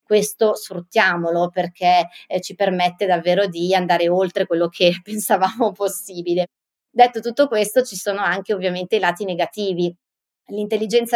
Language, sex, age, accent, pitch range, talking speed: Italian, female, 30-49, native, 180-220 Hz, 130 wpm